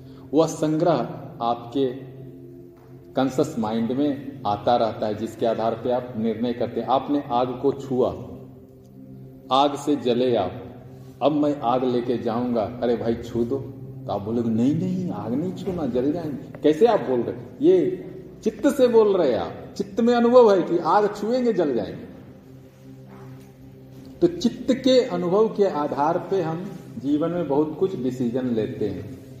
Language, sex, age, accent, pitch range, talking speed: Hindi, male, 40-59, native, 120-195 Hz, 155 wpm